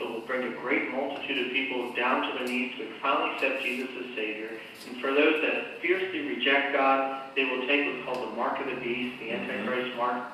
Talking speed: 215 wpm